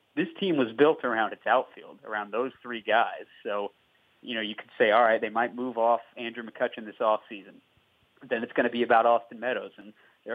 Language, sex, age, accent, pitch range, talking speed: English, male, 30-49, American, 110-135 Hz, 215 wpm